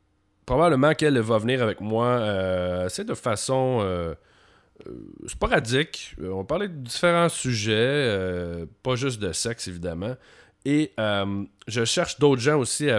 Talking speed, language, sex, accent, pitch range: 145 wpm, French, male, Canadian, 95-125 Hz